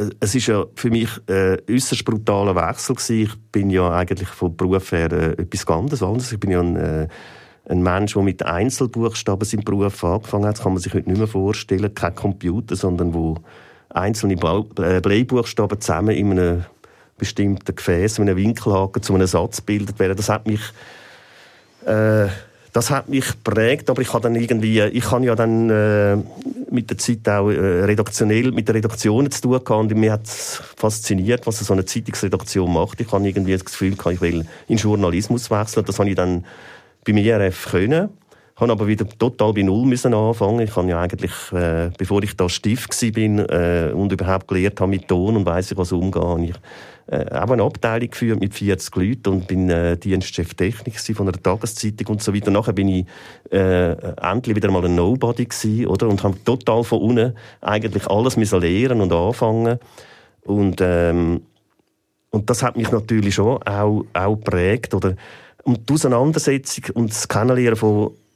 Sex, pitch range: male, 95-115 Hz